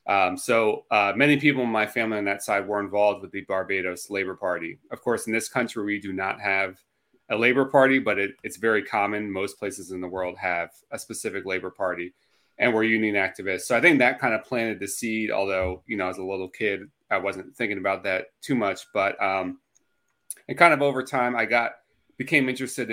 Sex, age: male, 30-49